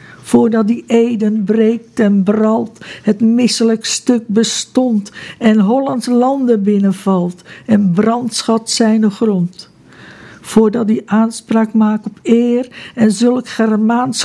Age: 60-79